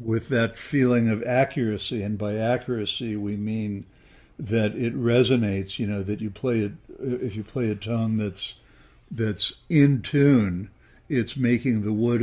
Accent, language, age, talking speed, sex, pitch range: American, English, 60-79, 155 wpm, male, 105-120 Hz